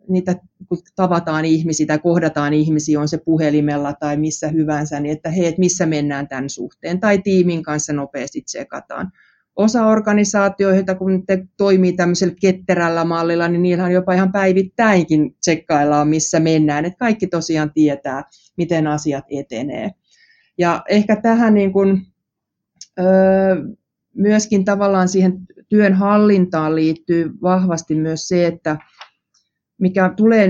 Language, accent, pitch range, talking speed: Finnish, native, 150-185 Hz, 130 wpm